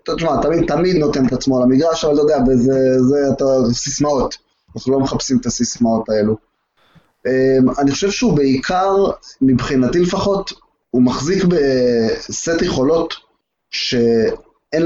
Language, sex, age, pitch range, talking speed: Hebrew, male, 20-39, 130-165 Hz, 135 wpm